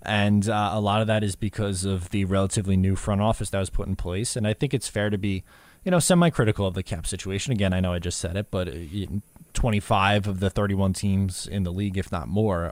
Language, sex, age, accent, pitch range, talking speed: English, male, 20-39, American, 95-120 Hz, 245 wpm